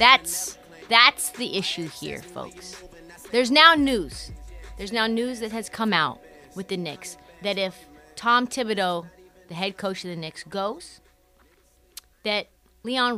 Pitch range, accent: 175-220 Hz, American